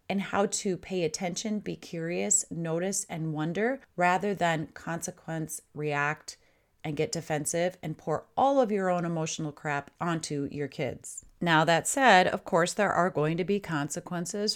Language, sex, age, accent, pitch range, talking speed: English, female, 30-49, American, 165-225 Hz, 160 wpm